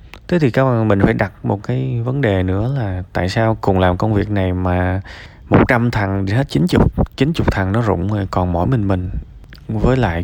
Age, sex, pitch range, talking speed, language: 20-39, male, 85-115 Hz, 235 wpm, Vietnamese